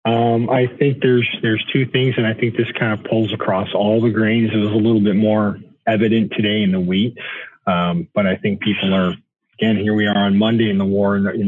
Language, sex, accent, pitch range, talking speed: English, male, American, 100-125 Hz, 235 wpm